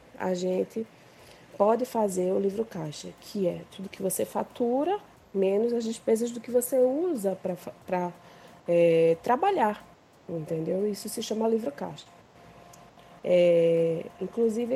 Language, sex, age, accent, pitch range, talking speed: Portuguese, female, 20-39, Brazilian, 175-225 Hz, 125 wpm